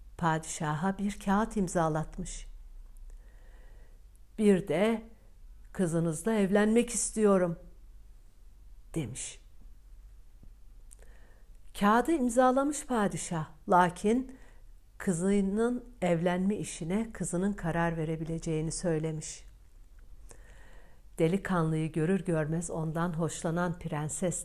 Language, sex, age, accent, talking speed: Turkish, female, 60-79, native, 65 wpm